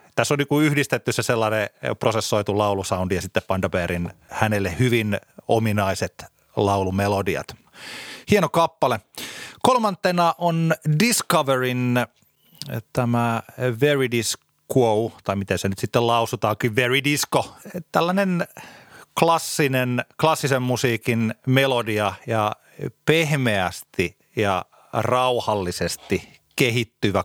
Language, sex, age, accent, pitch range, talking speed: Finnish, male, 30-49, native, 100-140 Hz, 90 wpm